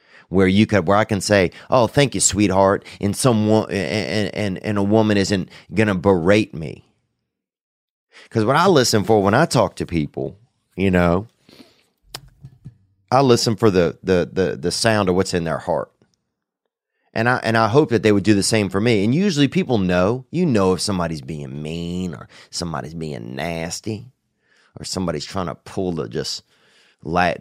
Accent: American